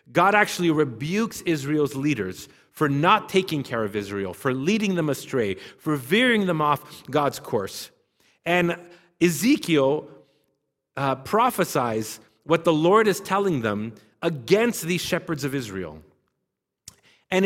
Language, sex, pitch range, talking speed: English, male, 130-185 Hz, 125 wpm